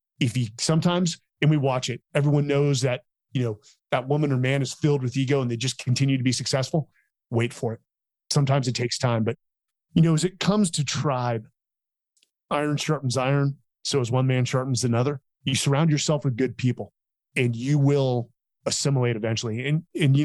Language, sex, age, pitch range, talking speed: English, male, 30-49, 125-150 Hz, 195 wpm